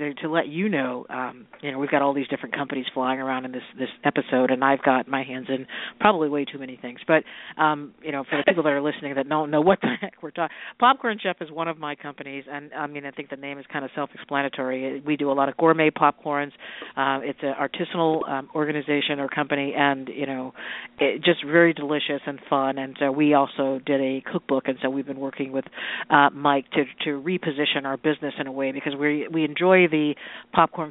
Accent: American